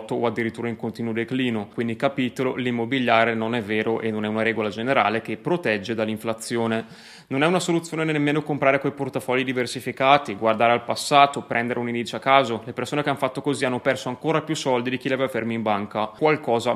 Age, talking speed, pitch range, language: 20-39, 200 wpm, 115-135 Hz, Italian